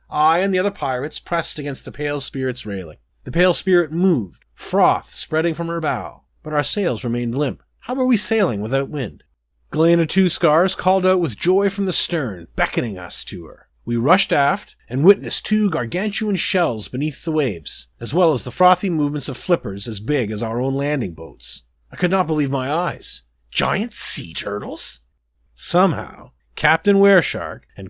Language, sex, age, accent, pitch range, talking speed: English, male, 30-49, American, 120-180 Hz, 180 wpm